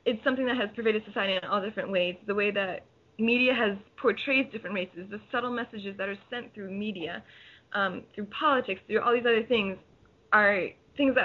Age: 20-39